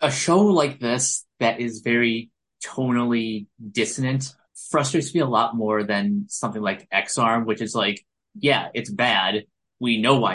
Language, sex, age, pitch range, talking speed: English, male, 20-39, 110-135 Hz, 160 wpm